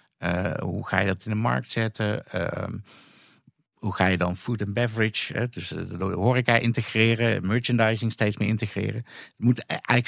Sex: male